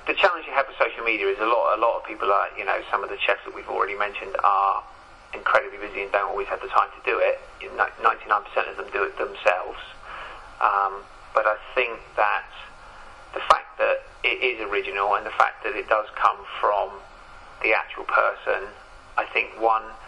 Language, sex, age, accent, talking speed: English, male, 30-49, British, 205 wpm